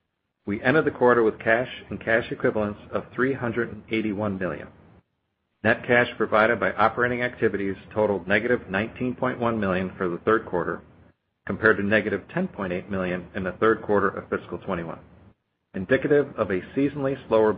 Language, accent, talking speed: English, American, 145 wpm